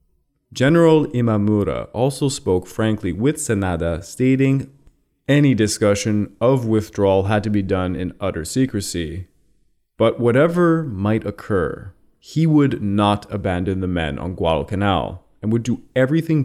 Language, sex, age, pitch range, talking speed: English, male, 20-39, 95-125 Hz, 130 wpm